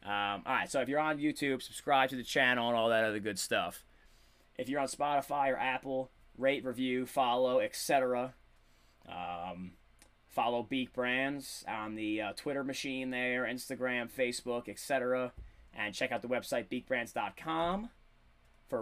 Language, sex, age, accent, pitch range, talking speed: English, male, 20-39, American, 105-130 Hz, 150 wpm